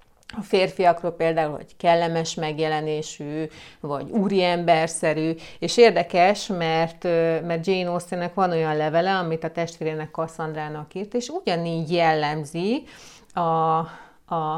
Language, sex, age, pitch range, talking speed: Hungarian, female, 30-49, 160-195 Hz, 110 wpm